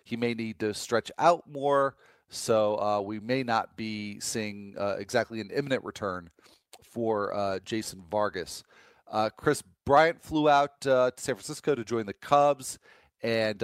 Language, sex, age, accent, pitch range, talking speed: English, male, 40-59, American, 100-135 Hz, 165 wpm